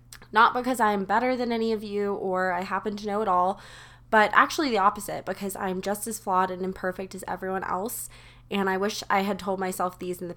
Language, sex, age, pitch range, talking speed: English, female, 20-39, 190-225 Hz, 225 wpm